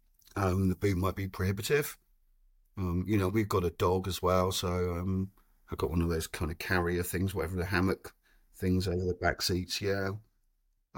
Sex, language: male, English